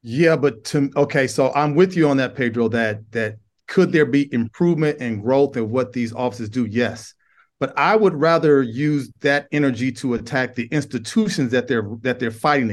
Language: English